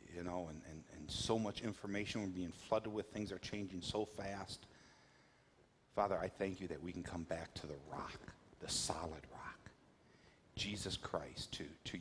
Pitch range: 85-105 Hz